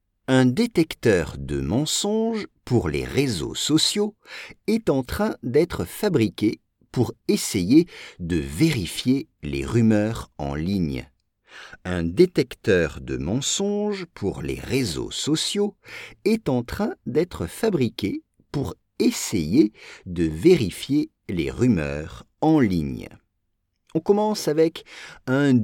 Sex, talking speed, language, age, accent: male, 110 wpm, English, 50-69, French